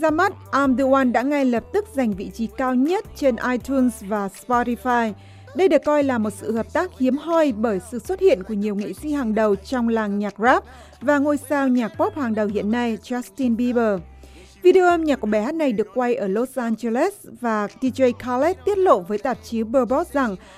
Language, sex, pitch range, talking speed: Vietnamese, female, 225-285 Hz, 220 wpm